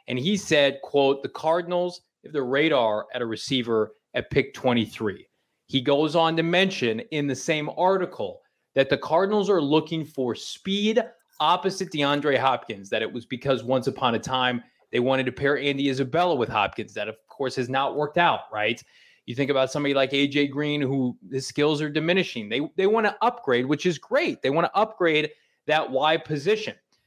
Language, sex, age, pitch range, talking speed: English, male, 20-39, 135-175 Hz, 190 wpm